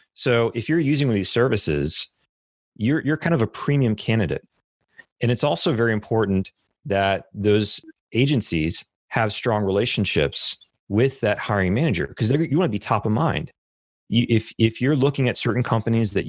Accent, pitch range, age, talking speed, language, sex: American, 95-125 Hz, 30-49, 175 wpm, English, male